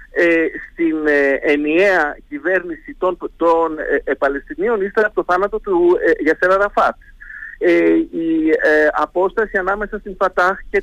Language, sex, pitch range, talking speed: Greek, male, 150-245 Hz, 110 wpm